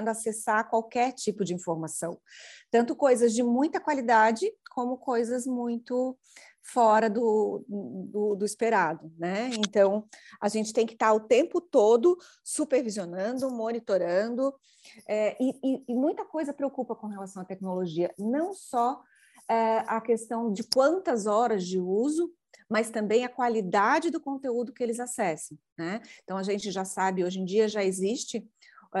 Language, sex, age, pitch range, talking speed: Vietnamese, female, 30-49, 190-235 Hz, 145 wpm